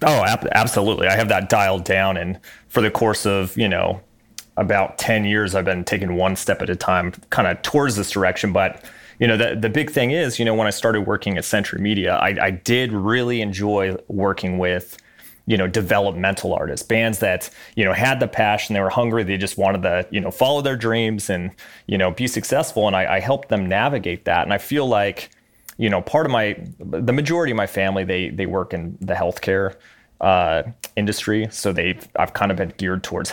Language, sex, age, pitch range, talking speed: English, male, 30-49, 95-110 Hz, 215 wpm